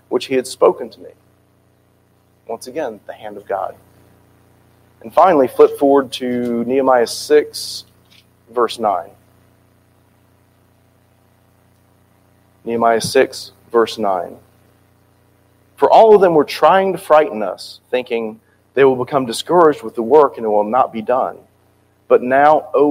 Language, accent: English, American